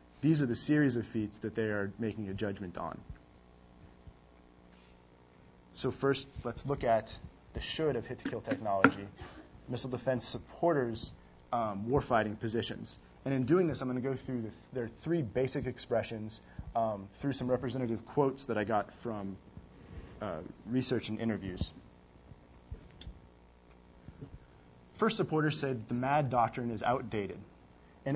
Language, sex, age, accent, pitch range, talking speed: English, male, 20-39, American, 95-140 Hz, 135 wpm